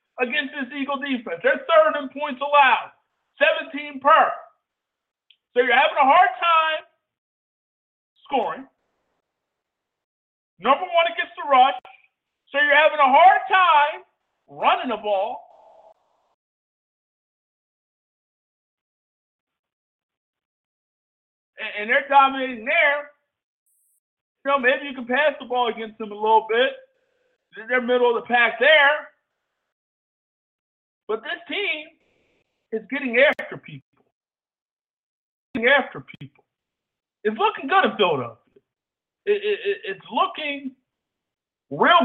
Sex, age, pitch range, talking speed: male, 50-69, 255-340 Hz, 105 wpm